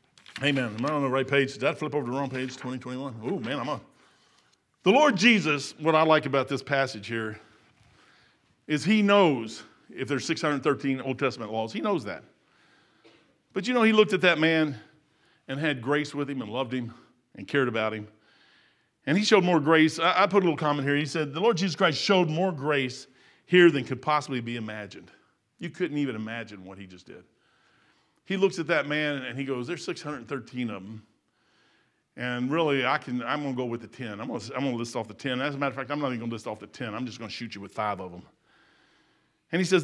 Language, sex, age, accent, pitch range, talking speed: English, male, 50-69, American, 125-170 Hz, 235 wpm